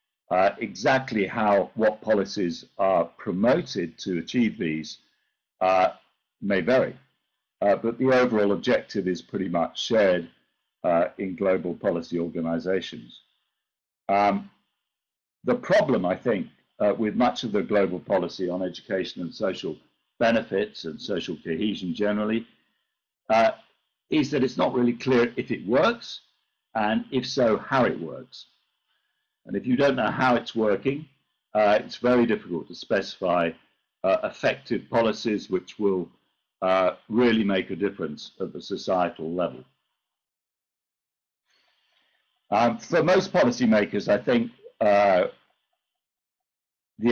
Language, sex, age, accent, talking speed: English, male, 50-69, British, 125 wpm